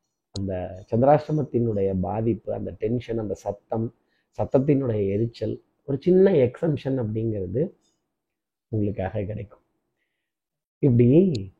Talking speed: 85 wpm